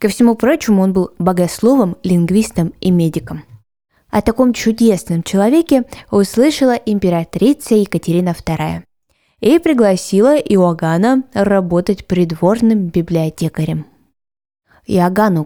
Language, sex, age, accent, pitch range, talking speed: Russian, female, 20-39, native, 170-240 Hz, 95 wpm